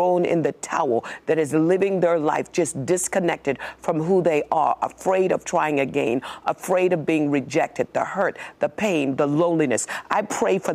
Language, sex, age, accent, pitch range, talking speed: English, female, 50-69, American, 175-250 Hz, 175 wpm